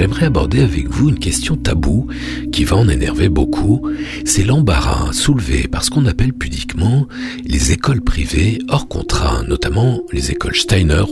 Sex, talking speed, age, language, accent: male, 155 wpm, 60-79, French, French